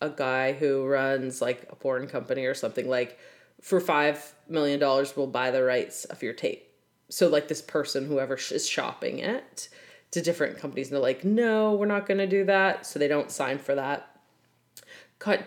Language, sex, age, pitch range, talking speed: English, female, 20-39, 140-195 Hz, 190 wpm